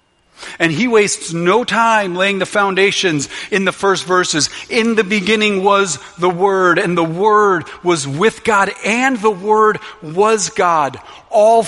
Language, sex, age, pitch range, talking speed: English, male, 40-59, 135-195 Hz, 155 wpm